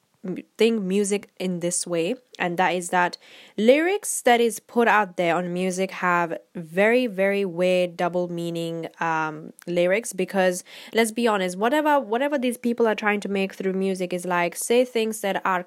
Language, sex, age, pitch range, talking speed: English, female, 10-29, 180-215 Hz, 175 wpm